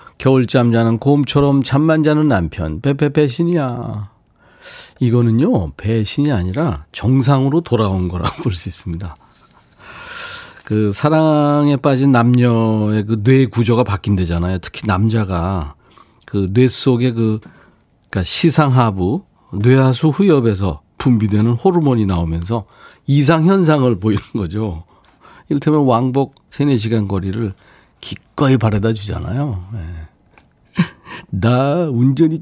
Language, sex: Korean, male